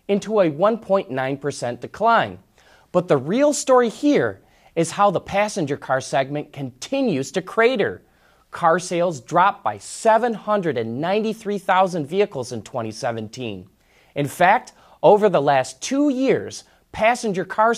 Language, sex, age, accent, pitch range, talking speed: English, male, 30-49, American, 140-210 Hz, 120 wpm